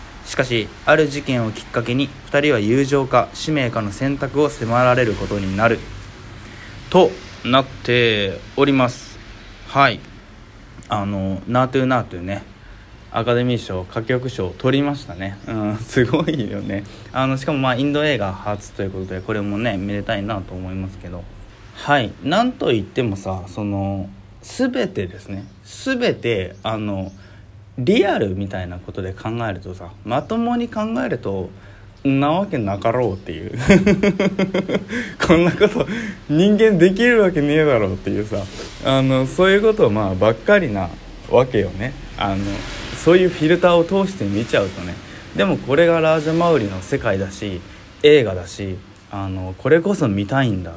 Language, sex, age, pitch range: Japanese, male, 20-39, 100-140 Hz